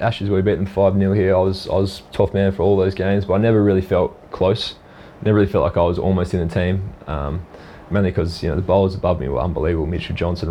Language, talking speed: English, 270 wpm